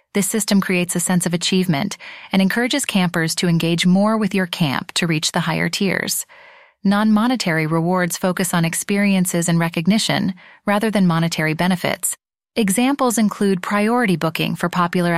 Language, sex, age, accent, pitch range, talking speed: English, female, 30-49, American, 180-220 Hz, 150 wpm